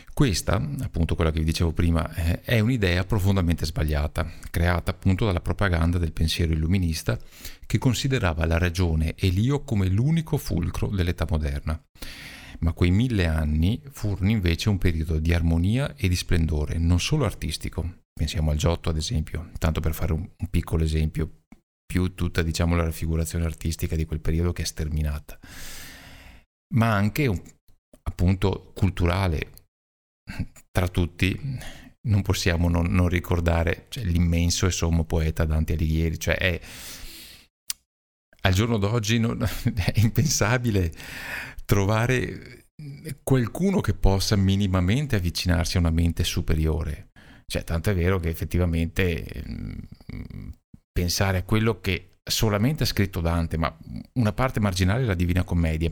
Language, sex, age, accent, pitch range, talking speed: Italian, male, 50-69, native, 80-105 Hz, 130 wpm